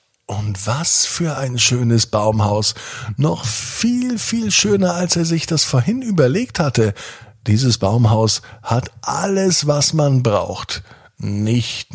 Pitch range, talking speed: 105-160 Hz, 125 wpm